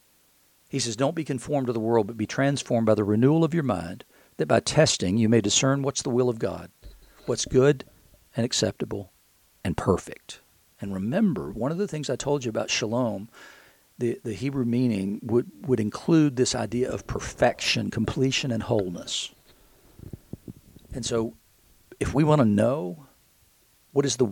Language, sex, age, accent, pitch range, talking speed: English, male, 50-69, American, 110-135 Hz, 170 wpm